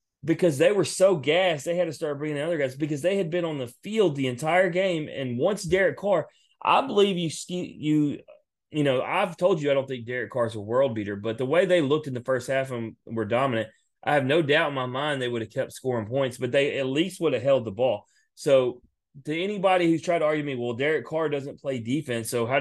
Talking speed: 250 wpm